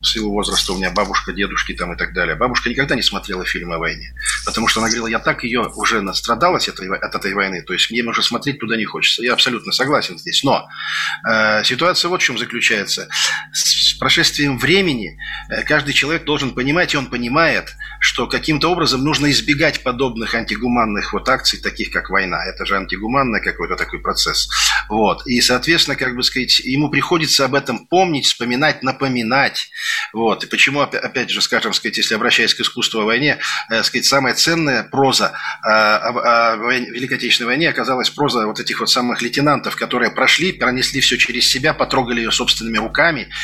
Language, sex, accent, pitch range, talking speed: Russian, male, native, 120-150 Hz, 175 wpm